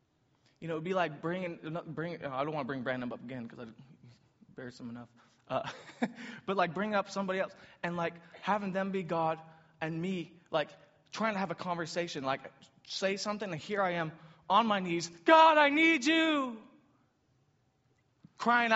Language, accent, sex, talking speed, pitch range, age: English, American, male, 180 wpm, 160-225 Hz, 20-39